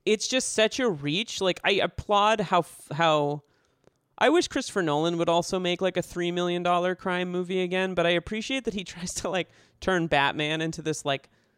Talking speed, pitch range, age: 190 wpm, 140-180 Hz, 30-49